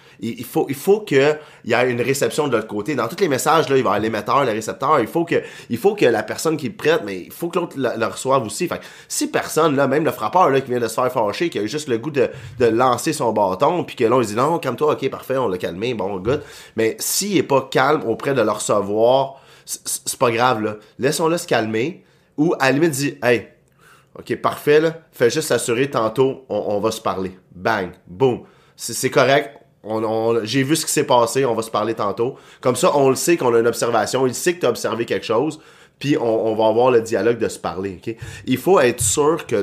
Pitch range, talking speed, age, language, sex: 110-150 Hz, 260 wpm, 30-49, French, male